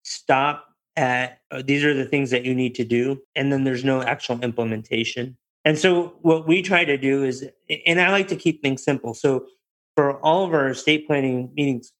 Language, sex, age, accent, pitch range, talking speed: English, male, 30-49, American, 120-145 Hz, 205 wpm